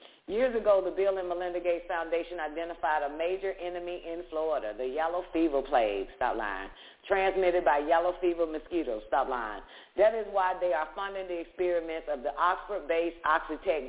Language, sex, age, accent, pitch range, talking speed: English, female, 40-59, American, 145-180 Hz, 170 wpm